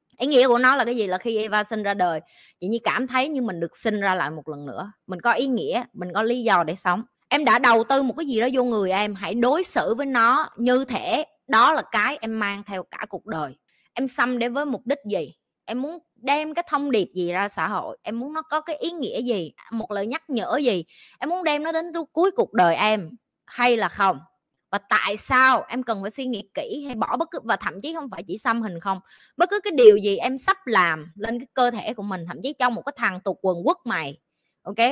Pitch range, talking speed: 200-270 Hz, 260 wpm